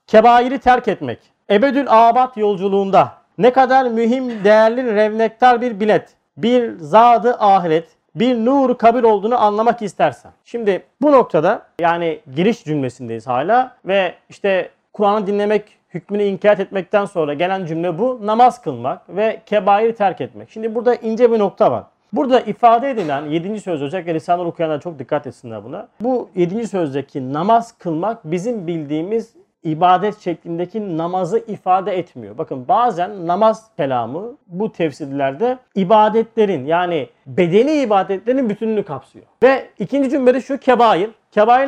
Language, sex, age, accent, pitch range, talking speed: Turkish, male, 40-59, native, 170-235 Hz, 135 wpm